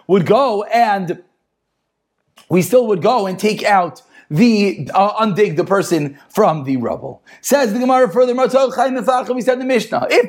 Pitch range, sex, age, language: 210-265 Hz, male, 40-59, English